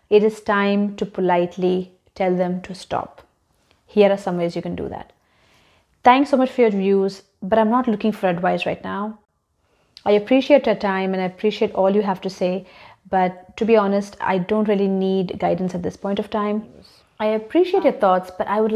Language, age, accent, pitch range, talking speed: English, 30-49, Indian, 185-215 Hz, 205 wpm